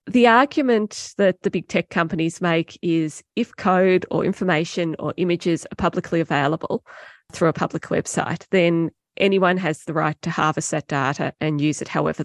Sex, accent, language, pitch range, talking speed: female, Australian, English, 160-190 Hz, 170 wpm